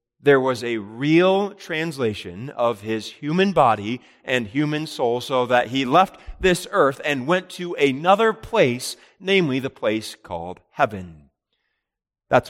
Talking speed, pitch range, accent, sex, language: 140 wpm, 110-145 Hz, American, male, English